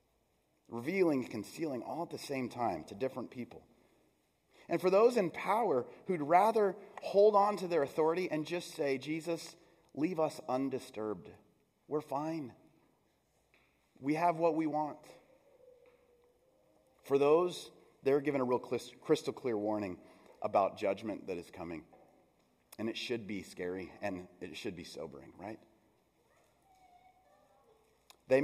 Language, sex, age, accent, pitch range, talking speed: English, male, 30-49, American, 110-165 Hz, 130 wpm